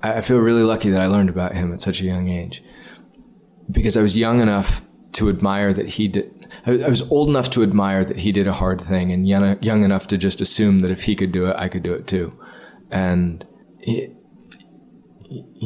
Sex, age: male, 20-39